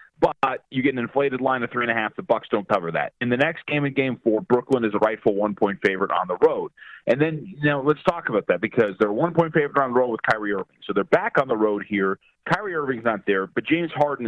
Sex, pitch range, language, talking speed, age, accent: male, 120-165 Hz, English, 280 wpm, 30-49, American